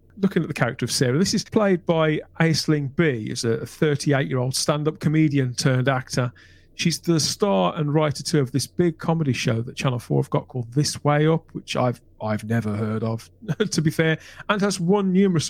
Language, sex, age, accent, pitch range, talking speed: English, male, 40-59, British, 130-165 Hz, 210 wpm